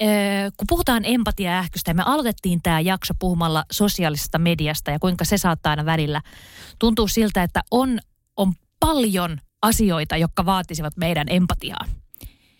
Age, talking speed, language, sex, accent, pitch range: 30-49, 140 wpm, Finnish, female, native, 175-240 Hz